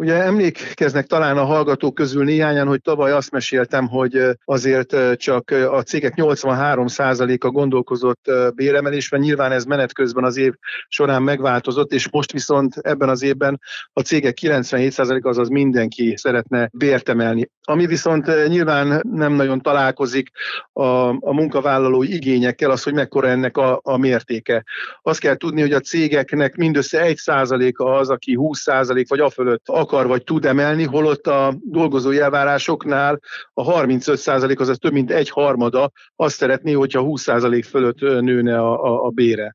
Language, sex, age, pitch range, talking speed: Hungarian, male, 50-69, 130-150 Hz, 150 wpm